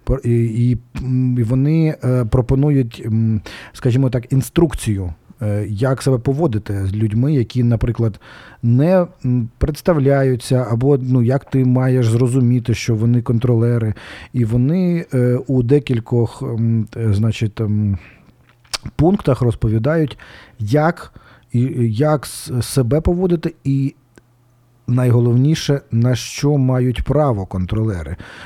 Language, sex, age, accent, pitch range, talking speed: Ukrainian, male, 40-59, native, 115-140 Hz, 90 wpm